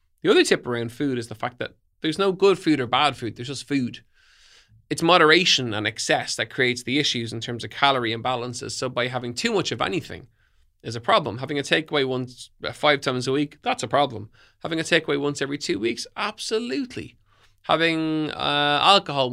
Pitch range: 120-150 Hz